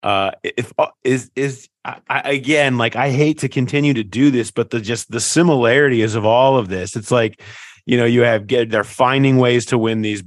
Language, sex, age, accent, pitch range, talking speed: English, male, 30-49, American, 90-110 Hz, 230 wpm